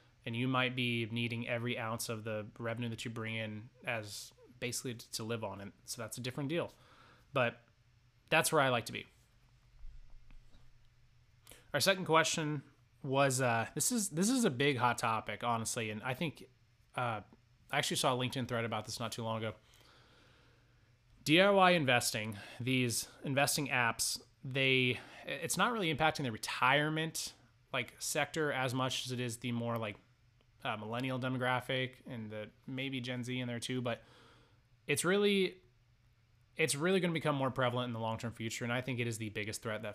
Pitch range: 115-130 Hz